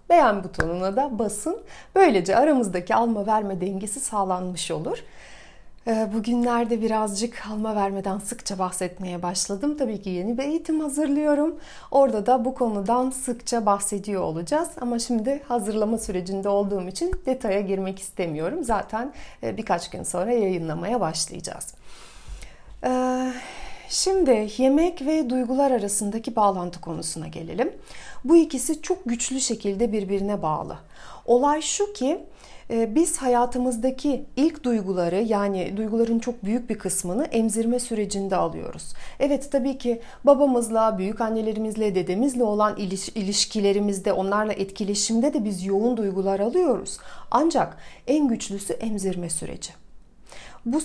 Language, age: Turkish, 40-59